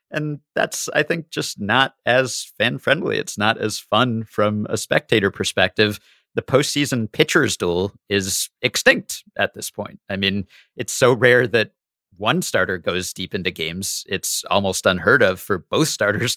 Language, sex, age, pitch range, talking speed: English, male, 50-69, 95-115 Hz, 160 wpm